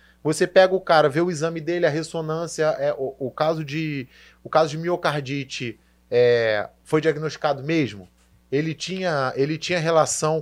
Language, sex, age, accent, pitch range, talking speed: Portuguese, male, 20-39, Brazilian, 150-200 Hz, 160 wpm